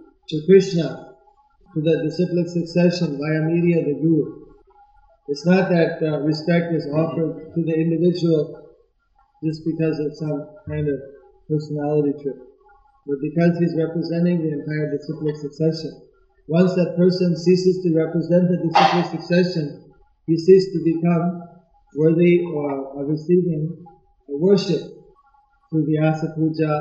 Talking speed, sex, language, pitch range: 130 wpm, male, English, 155-185 Hz